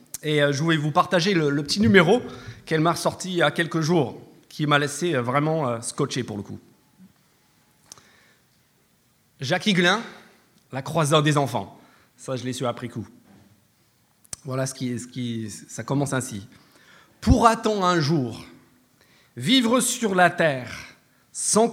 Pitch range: 140-200 Hz